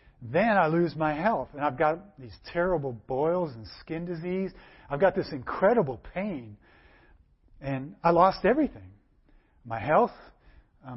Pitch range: 125-170 Hz